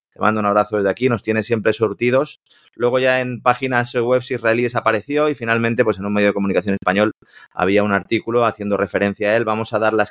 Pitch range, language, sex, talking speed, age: 100-115 Hz, Spanish, male, 220 wpm, 30-49